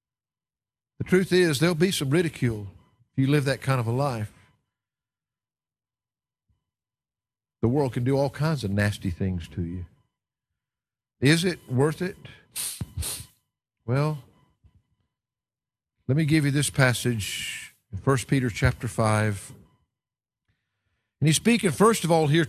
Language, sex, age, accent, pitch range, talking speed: English, male, 50-69, American, 125-180 Hz, 130 wpm